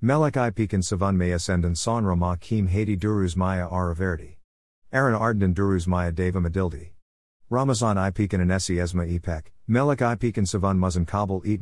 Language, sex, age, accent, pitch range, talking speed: Turkish, male, 50-69, American, 85-110 Hz, 155 wpm